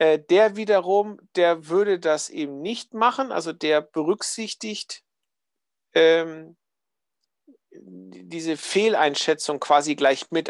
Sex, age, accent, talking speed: male, 50-69, German, 95 wpm